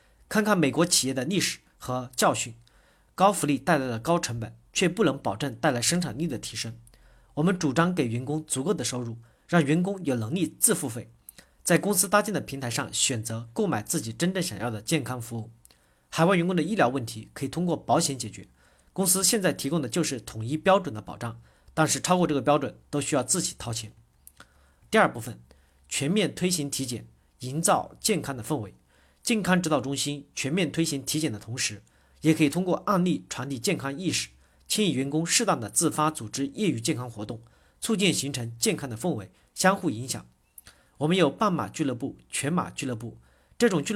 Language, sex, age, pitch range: Chinese, male, 40-59, 115-170 Hz